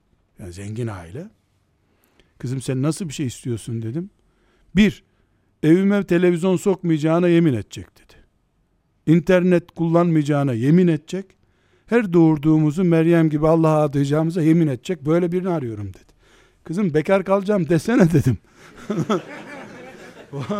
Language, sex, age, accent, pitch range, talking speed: Turkish, male, 60-79, native, 120-170 Hz, 115 wpm